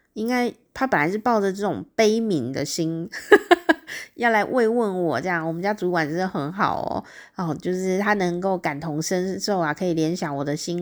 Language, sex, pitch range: Chinese, female, 160-215 Hz